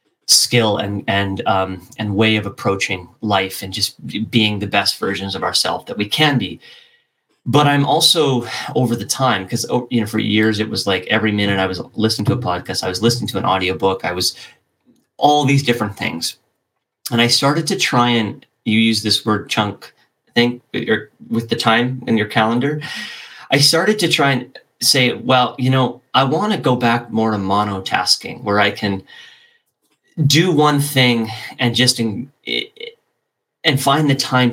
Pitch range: 100-125 Hz